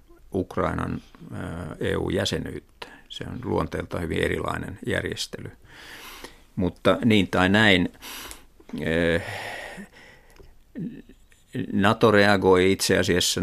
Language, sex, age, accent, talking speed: Finnish, male, 50-69, native, 70 wpm